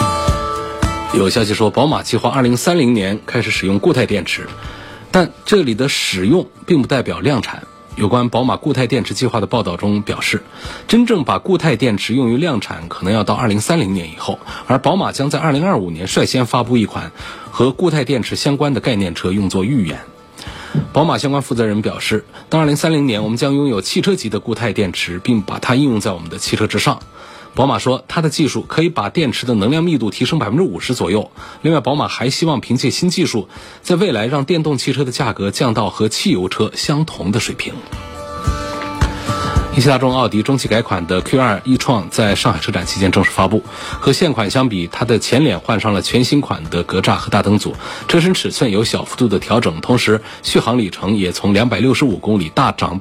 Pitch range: 100-135 Hz